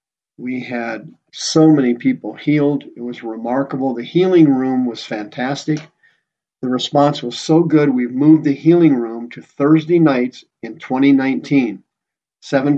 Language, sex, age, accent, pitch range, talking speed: English, male, 50-69, American, 120-145 Hz, 140 wpm